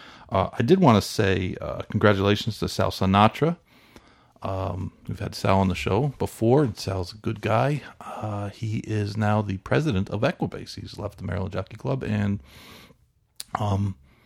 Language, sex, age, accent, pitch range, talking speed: English, male, 50-69, American, 95-115 Hz, 165 wpm